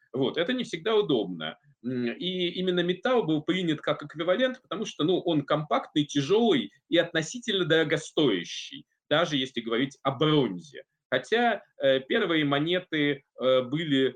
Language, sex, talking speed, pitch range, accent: Russian, male, 125 wpm, 130-160 Hz, native